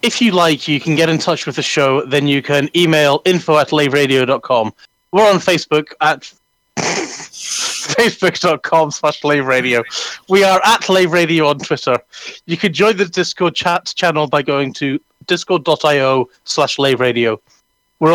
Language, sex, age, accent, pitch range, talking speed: English, male, 30-49, British, 145-180 Hz, 150 wpm